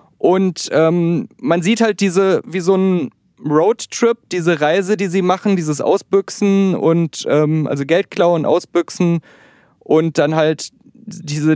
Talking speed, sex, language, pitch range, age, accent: 140 wpm, male, German, 160-195 Hz, 20-39, German